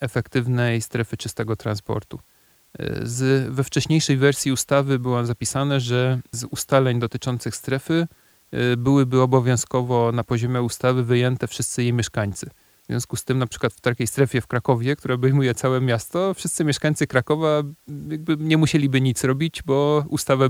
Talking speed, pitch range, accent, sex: 145 wpm, 115-130 Hz, native, male